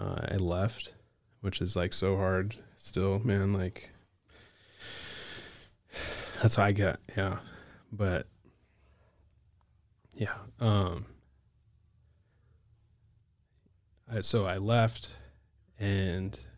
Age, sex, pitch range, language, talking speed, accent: 20-39, male, 95-110 Hz, English, 85 wpm, American